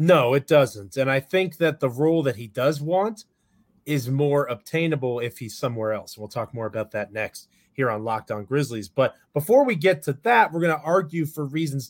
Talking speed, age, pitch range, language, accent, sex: 215 wpm, 30-49, 125-165 Hz, English, American, male